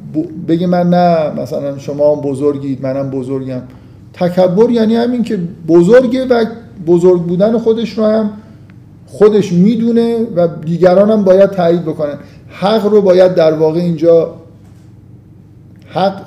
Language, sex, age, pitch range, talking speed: Persian, male, 50-69, 145-195 Hz, 130 wpm